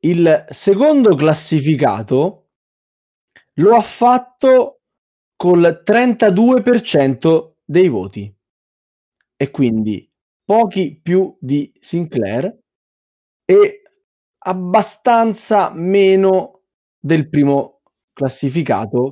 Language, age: Italian, 20-39